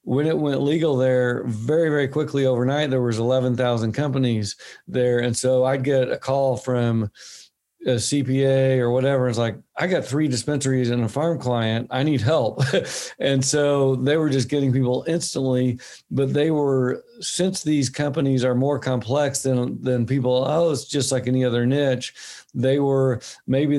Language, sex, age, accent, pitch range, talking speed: English, male, 50-69, American, 125-140 Hz, 175 wpm